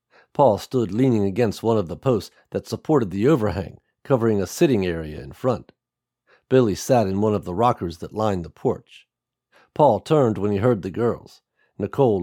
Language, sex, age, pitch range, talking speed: English, male, 50-69, 100-130 Hz, 180 wpm